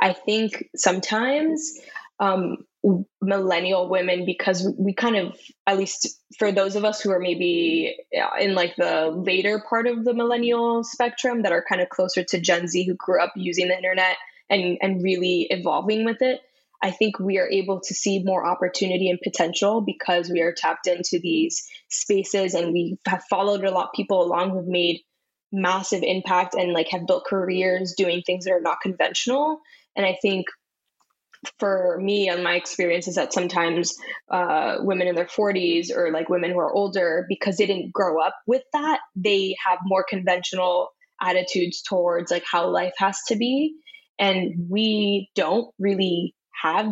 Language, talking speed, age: English, 175 wpm, 10-29